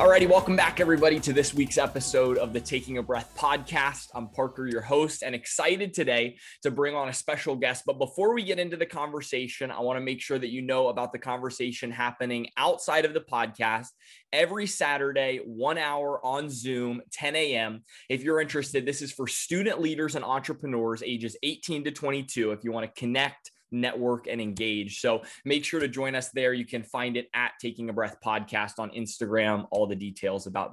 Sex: male